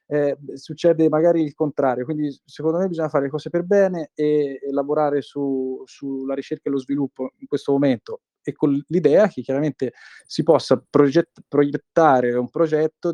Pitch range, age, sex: 125-145 Hz, 20-39, male